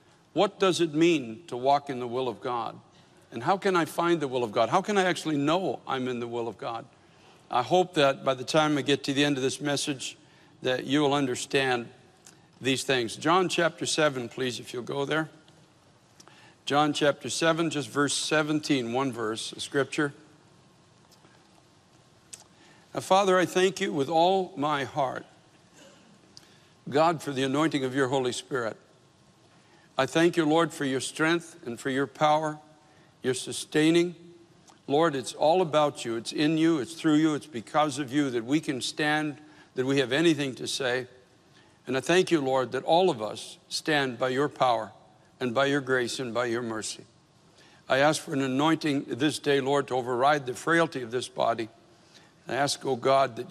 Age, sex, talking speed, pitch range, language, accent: 60-79, male, 185 wpm, 130-160 Hz, English, American